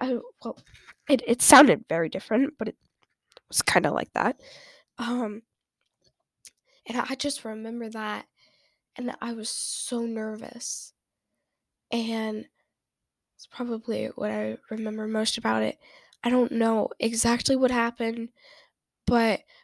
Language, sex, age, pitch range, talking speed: English, female, 10-29, 225-270 Hz, 125 wpm